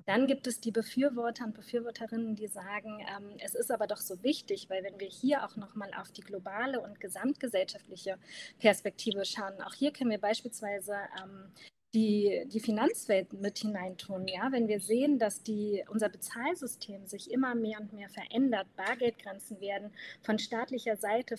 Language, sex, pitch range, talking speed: German, female, 200-240 Hz, 170 wpm